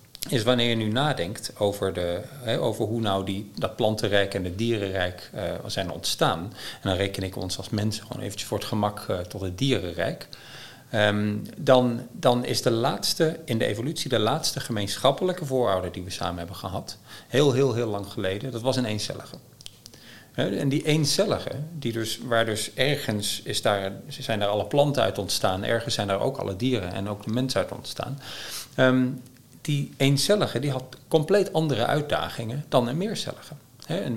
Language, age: Dutch, 40-59